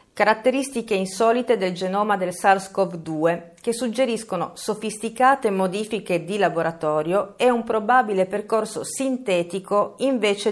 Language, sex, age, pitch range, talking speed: Italian, female, 40-59, 175-215 Hz, 105 wpm